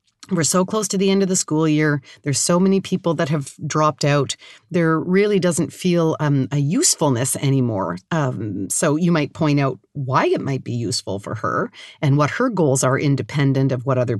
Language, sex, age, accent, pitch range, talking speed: English, female, 40-59, American, 135-175 Hz, 205 wpm